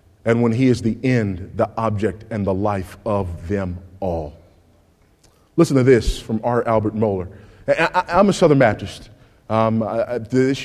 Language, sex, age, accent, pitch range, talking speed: English, male, 30-49, American, 105-125 Hz, 175 wpm